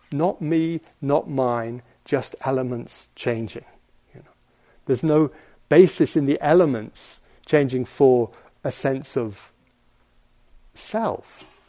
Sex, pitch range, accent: male, 130-190 Hz, British